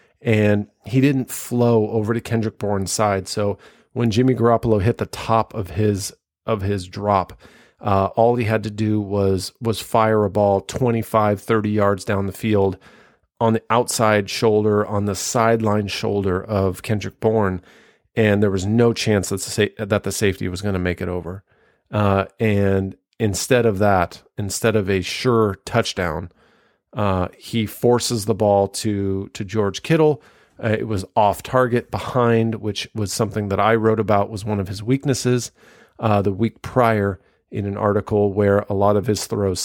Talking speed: 170 wpm